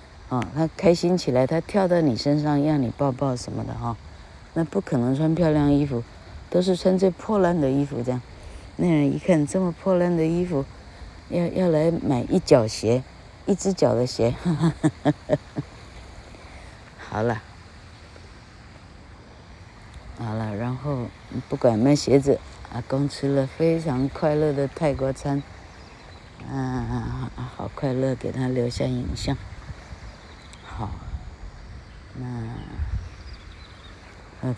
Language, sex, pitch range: Chinese, female, 90-140 Hz